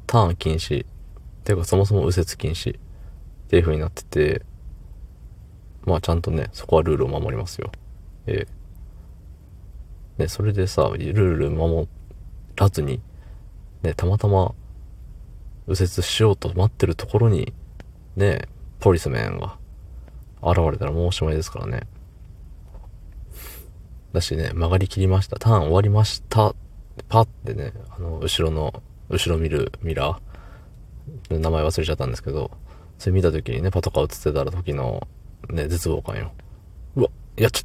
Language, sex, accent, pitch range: Japanese, male, native, 80-100 Hz